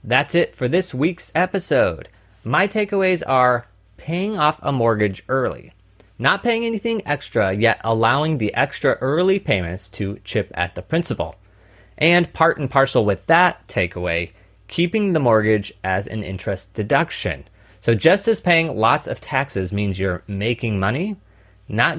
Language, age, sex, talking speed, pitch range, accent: English, 30-49, male, 150 wpm, 100-130 Hz, American